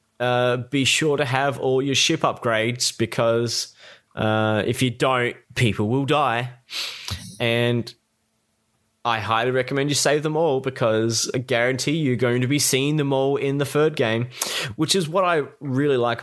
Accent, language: Australian, English